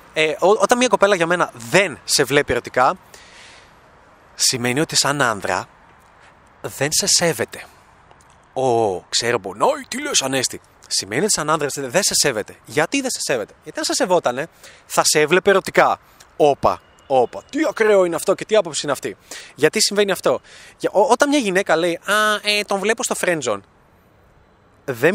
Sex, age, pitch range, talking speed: male, 30-49, 135-215 Hz, 165 wpm